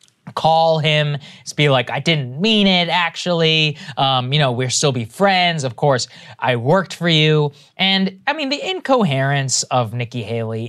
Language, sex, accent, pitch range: English, male, American, 125-175 Hz